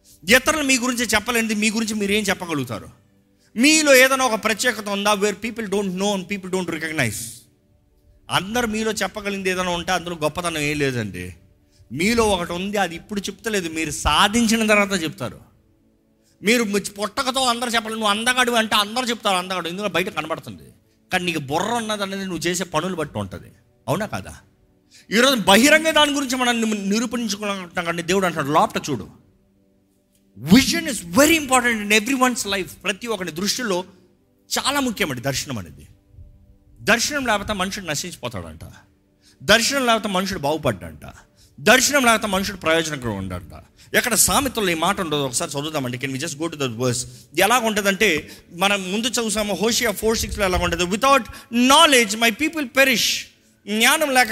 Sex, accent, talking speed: male, native, 170 wpm